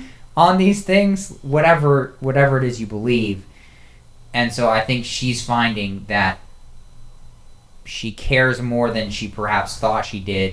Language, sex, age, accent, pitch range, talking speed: English, male, 20-39, American, 100-120 Hz, 140 wpm